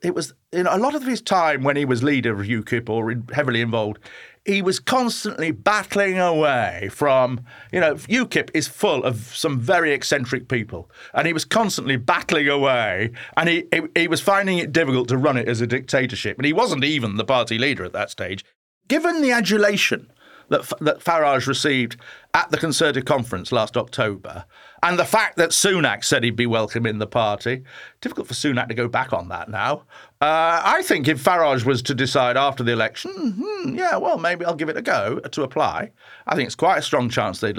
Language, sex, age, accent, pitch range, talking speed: English, male, 40-59, British, 120-165 Hz, 205 wpm